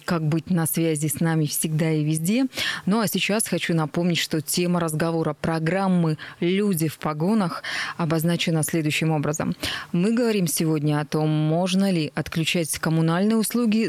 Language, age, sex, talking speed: Russian, 20-39, female, 145 wpm